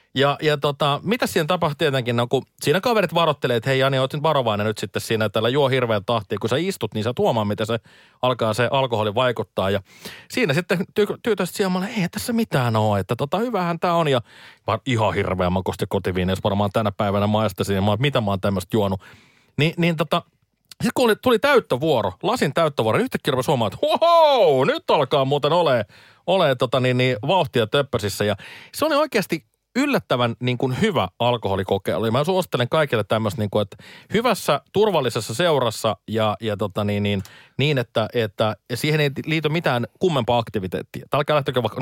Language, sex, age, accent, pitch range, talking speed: Finnish, male, 30-49, native, 110-170 Hz, 190 wpm